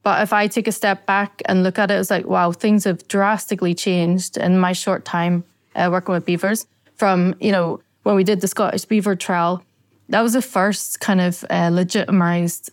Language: English